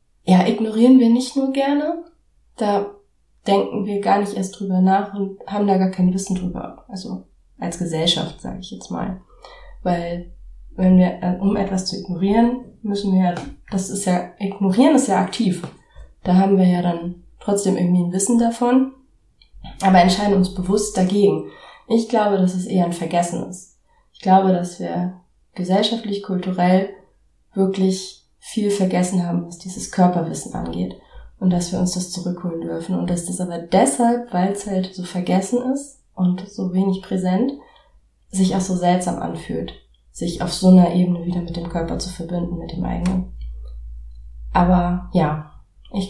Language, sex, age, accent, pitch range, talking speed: German, female, 20-39, German, 180-200 Hz, 165 wpm